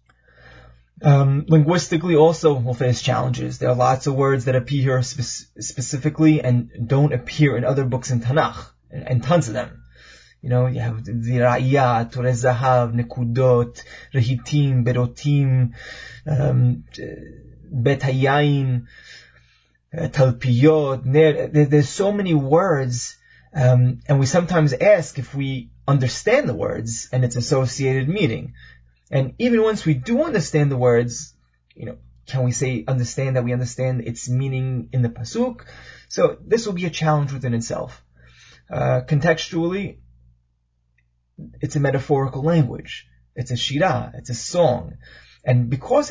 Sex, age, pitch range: male, 20-39, 120-150 Hz